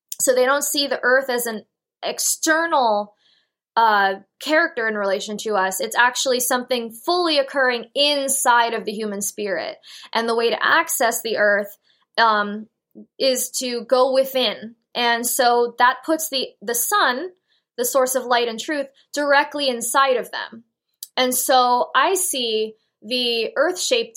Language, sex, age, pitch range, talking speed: English, female, 20-39, 220-265 Hz, 150 wpm